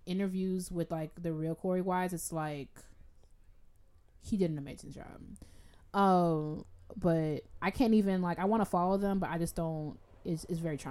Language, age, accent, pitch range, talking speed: English, 20-39, American, 170-210 Hz, 175 wpm